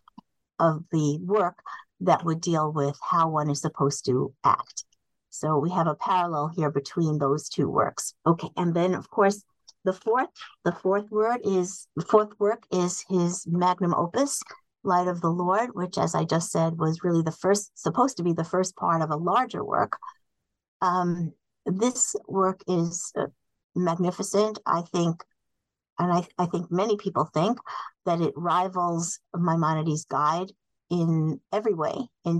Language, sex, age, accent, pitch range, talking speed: English, female, 50-69, American, 165-195 Hz, 160 wpm